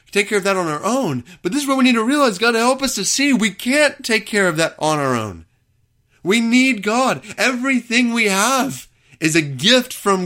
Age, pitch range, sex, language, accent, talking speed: 30-49, 130-200 Hz, male, English, American, 230 wpm